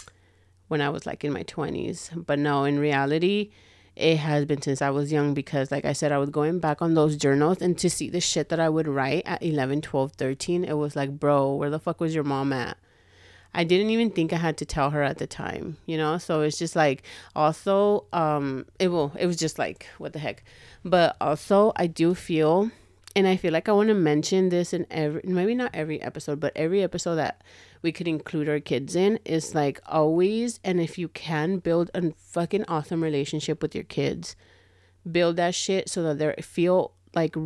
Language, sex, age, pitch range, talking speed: English, female, 30-49, 145-170 Hz, 215 wpm